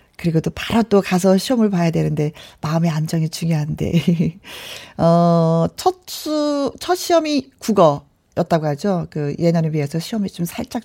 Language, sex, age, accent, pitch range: Korean, female, 40-59, native, 170-245 Hz